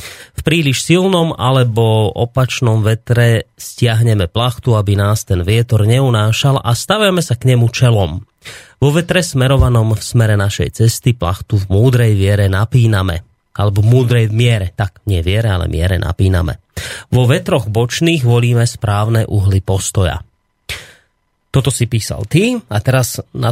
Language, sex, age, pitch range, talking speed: Slovak, male, 30-49, 105-125 Hz, 140 wpm